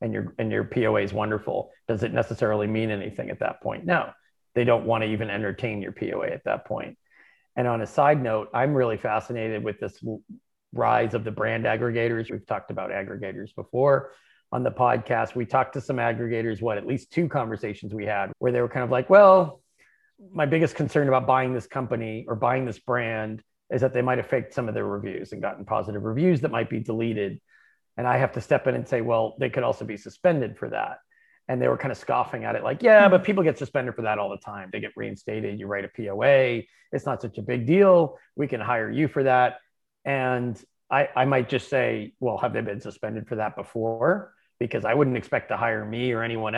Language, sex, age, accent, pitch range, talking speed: English, male, 40-59, American, 110-130 Hz, 225 wpm